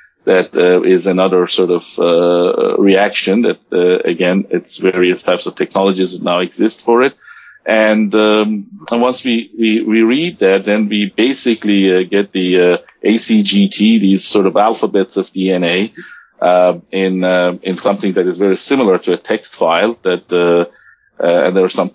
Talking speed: 175 wpm